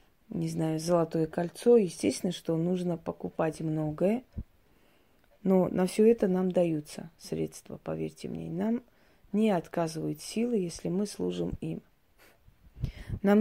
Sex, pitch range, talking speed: female, 165-200 Hz, 120 wpm